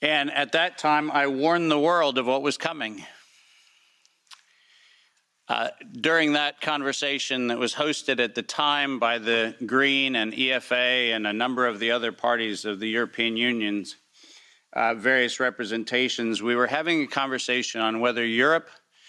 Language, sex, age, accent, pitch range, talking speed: English, male, 50-69, American, 115-150 Hz, 155 wpm